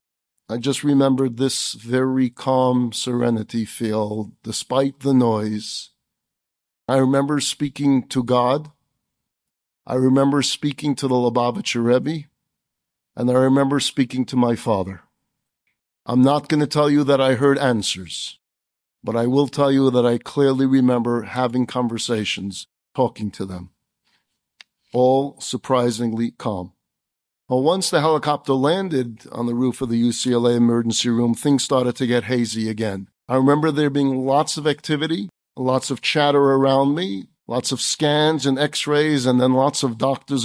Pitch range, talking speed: 120-140 Hz, 145 wpm